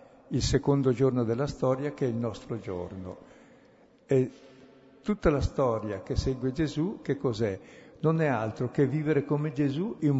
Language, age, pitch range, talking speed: Italian, 60-79, 115-145 Hz, 160 wpm